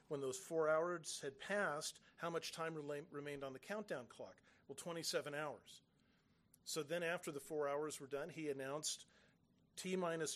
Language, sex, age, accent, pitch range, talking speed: English, male, 40-59, American, 140-175 Hz, 160 wpm